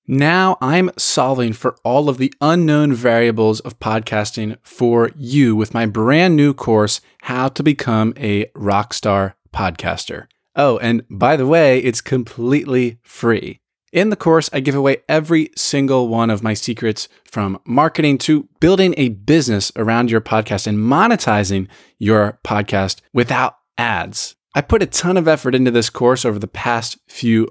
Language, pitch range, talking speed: English, 110-150 Hz, 155 wpm